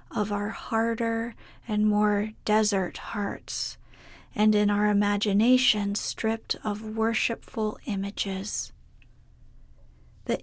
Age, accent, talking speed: 30-49, American, 90 wpm